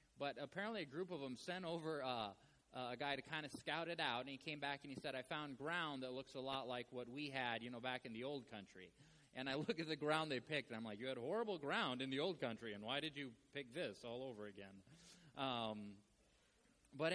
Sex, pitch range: male, 130-180 Hz